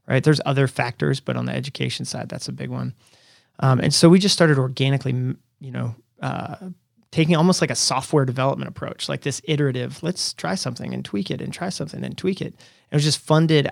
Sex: male